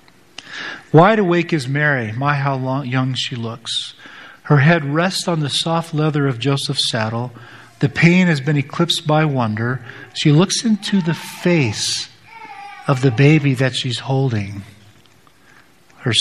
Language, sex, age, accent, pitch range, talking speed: English, male, 50-69, American, 115-150 Hz, 140 wpm